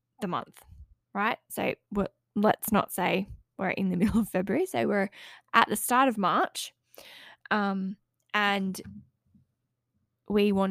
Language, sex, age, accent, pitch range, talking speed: English, female, 10-29, Australian, 195-235 Hz, 135 wpm